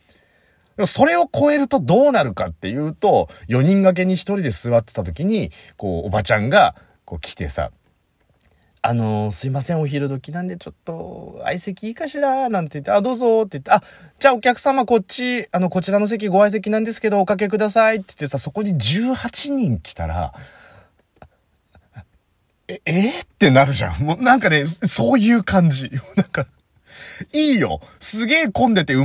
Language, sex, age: Japanese, male, 30-49